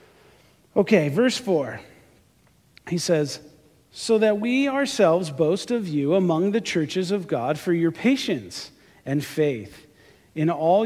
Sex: male